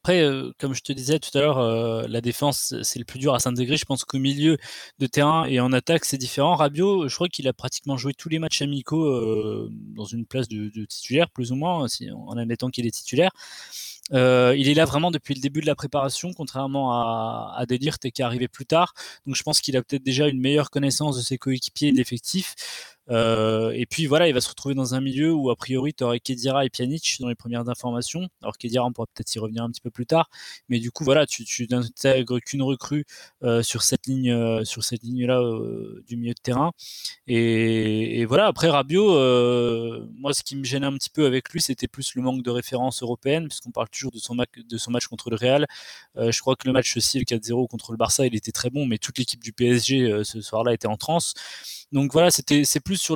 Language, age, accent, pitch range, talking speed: French, 20-39, French, 120-145 Hz, 240 wpm